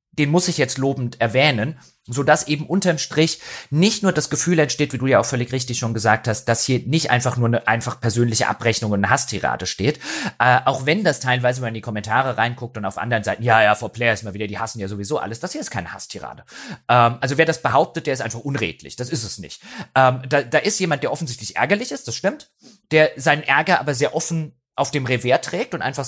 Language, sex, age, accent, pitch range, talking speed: German, male, 30-49, German, 115-160 Hz, 245 wpm